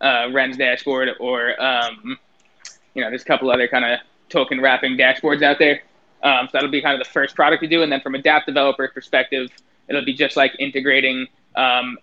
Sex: male